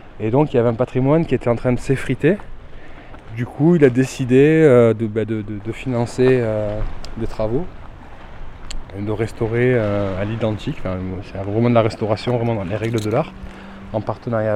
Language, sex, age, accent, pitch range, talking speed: French, male, 20-39, French, 110-130 Hz, 200 wpm